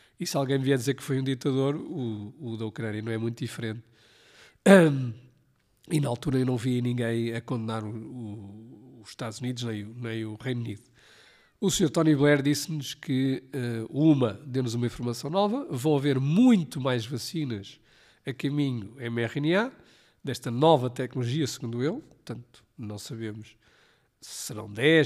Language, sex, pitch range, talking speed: Portuguese, male, 115-150 Hz, 155 wpm